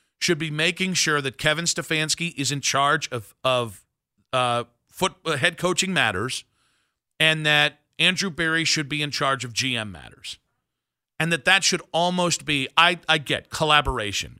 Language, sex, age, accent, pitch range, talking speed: English, male, 40-59, American, 130-170 Hz, 165 wpm